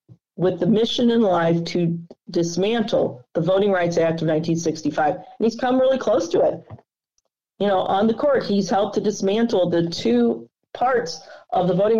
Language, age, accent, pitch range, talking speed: English, 40-59, American, 170-220 Hz, 175 wpm